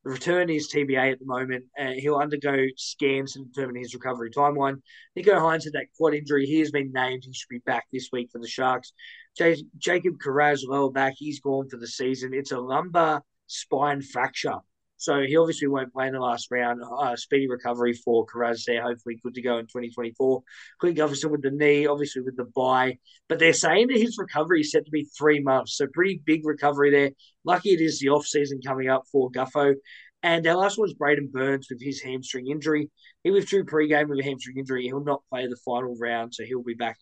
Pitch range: 130-155 Hz